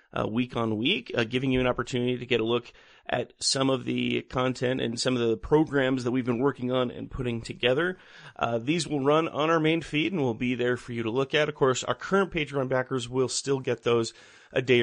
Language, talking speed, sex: English, 245 wpm, male